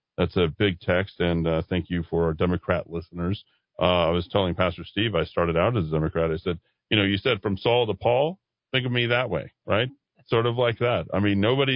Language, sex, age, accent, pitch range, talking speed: English, male, 40-59, American, 95-135 Hz, 240 wpm